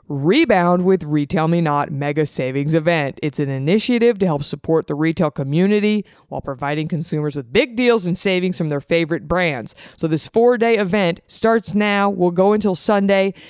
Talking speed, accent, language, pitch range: 180 wpm, American, English, 155-195 Hz